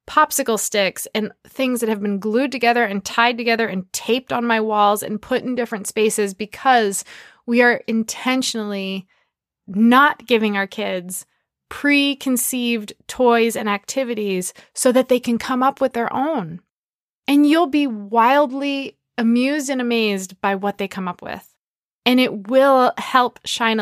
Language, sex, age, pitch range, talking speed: English, female, 20-39, 205-255 Hz, 155 wpm